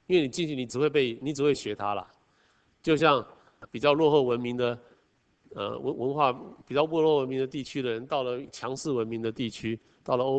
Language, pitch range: Chinese, 110-145 Hz